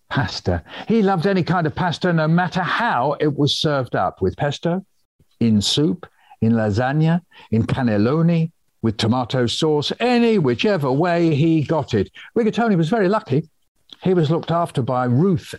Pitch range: 120-190 Hz